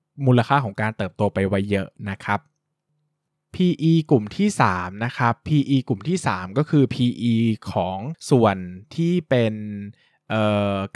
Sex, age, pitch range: male, 20-39, 105-140 Hz